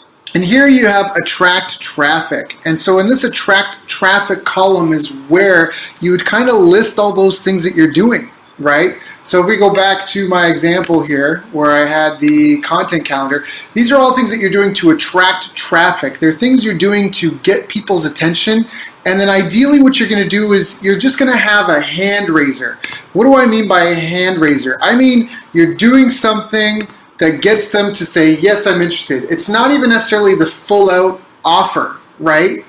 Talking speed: 195 wpm